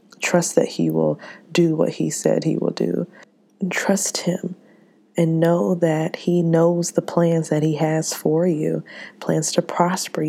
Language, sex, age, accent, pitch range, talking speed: English, female, 20-39, American, 155-175 Hz, 165 wpm